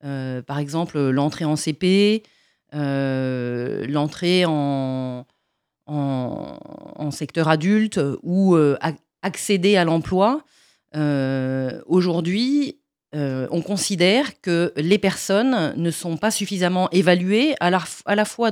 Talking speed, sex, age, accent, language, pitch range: 105 wpm, female, 40-59, French, French, 150-205 Hz